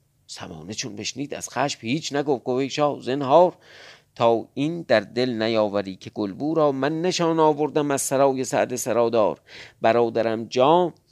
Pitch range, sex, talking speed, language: 120-155 Hz, male, 140 wpm, Persian